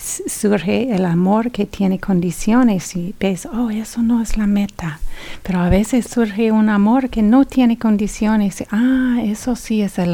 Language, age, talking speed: English, 40-59, 170 wpm